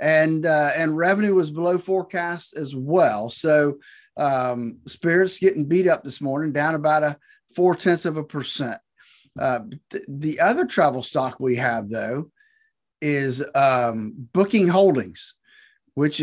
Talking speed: 145 wpm